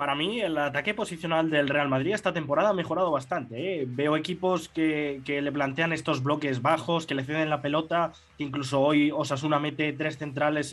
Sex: male